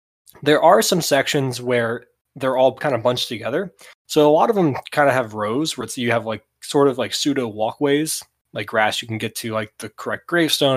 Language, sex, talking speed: English, male, 225 wpm